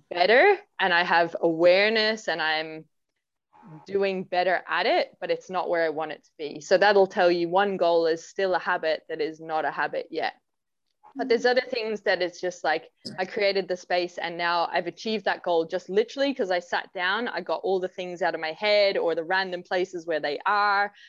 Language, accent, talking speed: English, Australian, 215 wpm